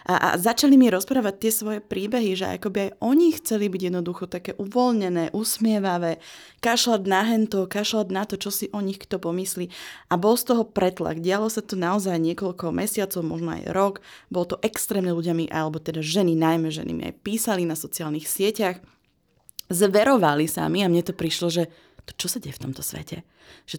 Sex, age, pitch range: female, 20-39, 160-200 Hz